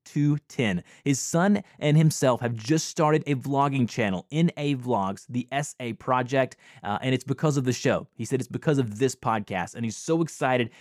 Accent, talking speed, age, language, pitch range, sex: American, 200 wpm, 20-39, English, 125-155 Hz, male